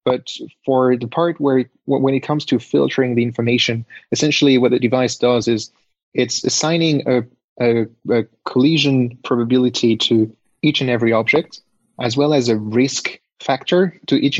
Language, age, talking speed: English, 30-49, 160 wpm